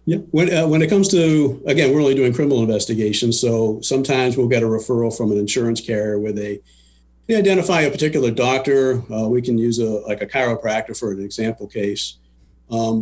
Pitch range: 110-135 Hz